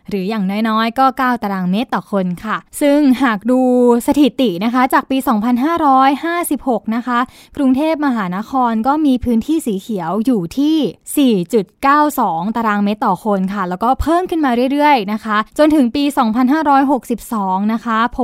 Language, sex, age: Thai, female, 20-39